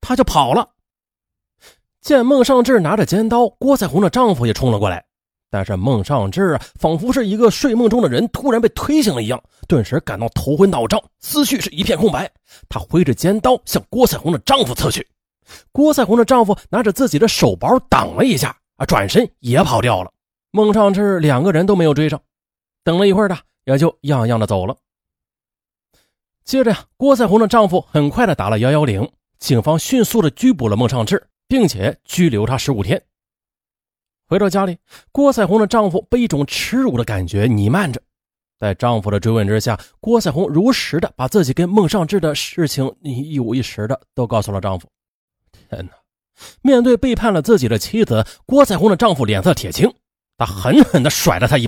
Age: 30-49